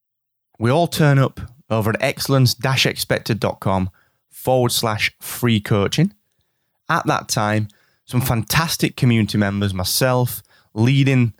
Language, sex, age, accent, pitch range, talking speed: English, male, 20-39, British, 100-135 Hz, 105 wpm